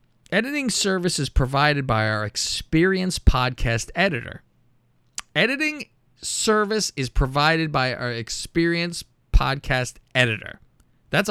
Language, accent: English, American